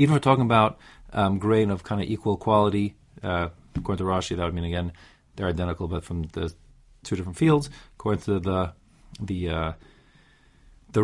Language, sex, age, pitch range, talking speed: English, male, 40-59, 95-125 Hz, 185 wpm